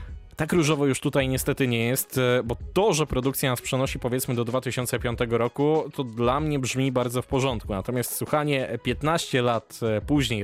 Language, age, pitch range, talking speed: Polish, 20-39, 115-135 Hz, 165 wpm